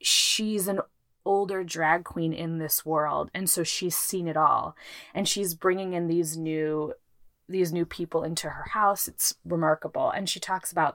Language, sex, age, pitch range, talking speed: English, female, 20-39, 160-185 Hz, 175 wpm